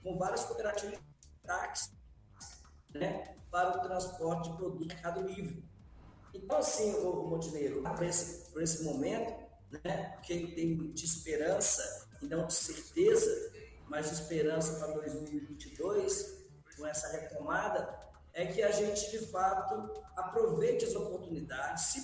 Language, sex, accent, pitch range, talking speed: Portuguese, male, Brazilian, 155-205 Hz, 130 wpm